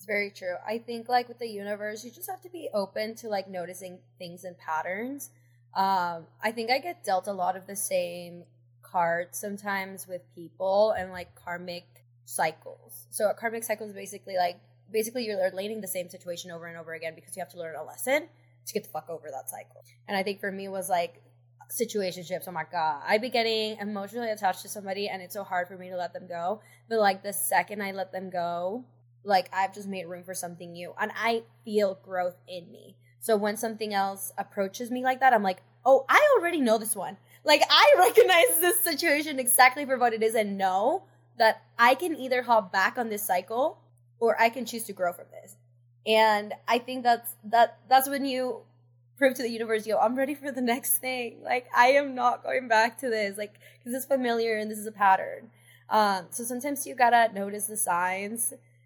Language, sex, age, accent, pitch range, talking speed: English, female, 10-29, American, 180-235 Hz, 215 wpm